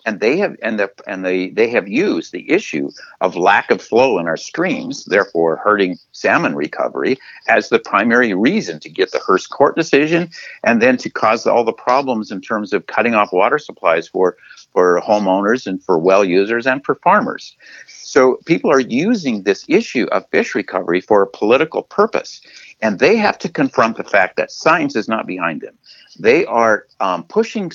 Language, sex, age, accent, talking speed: English, male, 50-69, American, 190 wpm